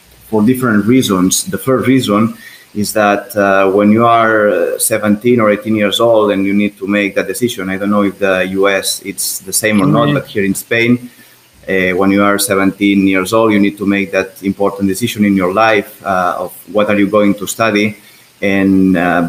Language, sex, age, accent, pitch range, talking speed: English, male, 30-49, Spanish, 95-110 Hz, 205 wpm